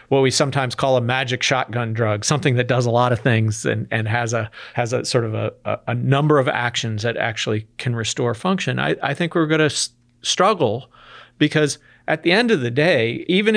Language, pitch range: English, 120-150 Hz